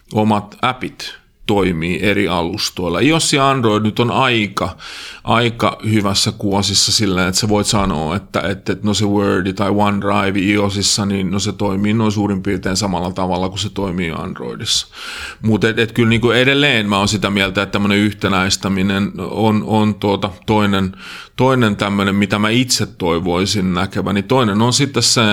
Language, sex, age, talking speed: Finnish, male, 30-49, 165 wpm